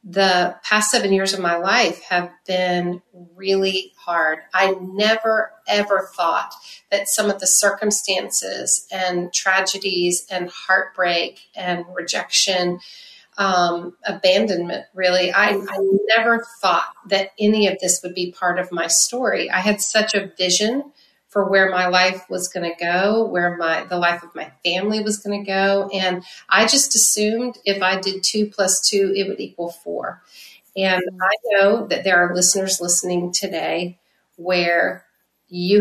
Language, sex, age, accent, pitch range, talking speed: English, female, 40-59, American, 175-200 Hz, 155 wpm